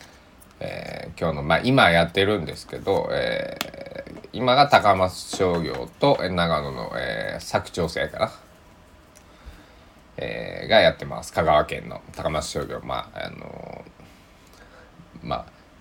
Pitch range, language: 85-100 Hz, Japanese